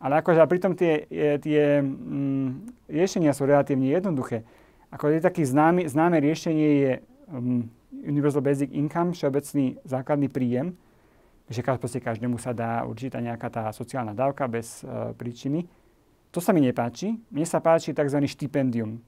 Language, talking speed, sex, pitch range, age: Slovak, 145 wpm, male, 130-160 Hz, 30-49